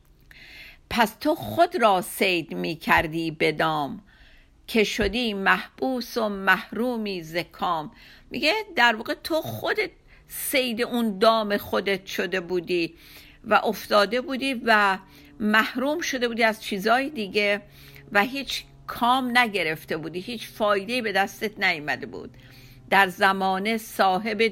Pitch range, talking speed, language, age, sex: 185-235 Hz, 120 wpm, Persian, 50-69, female